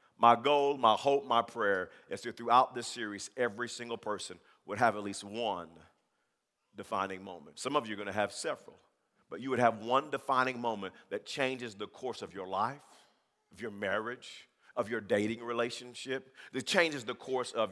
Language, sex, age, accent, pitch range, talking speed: English, male, 50-69, American, 115-145 Hz, 185 wpm